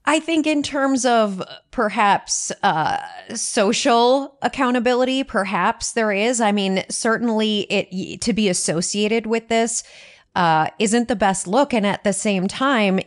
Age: 30-49